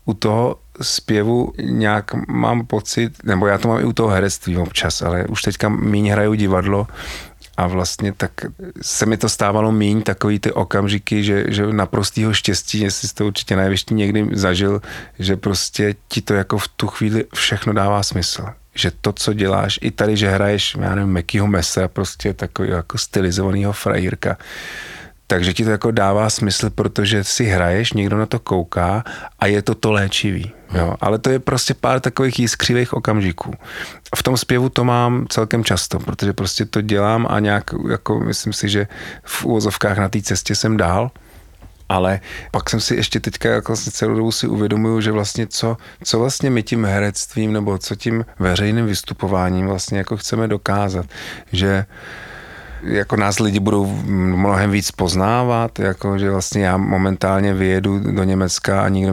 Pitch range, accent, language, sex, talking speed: 95-110 Hz, native, Czech, male, 175 wpm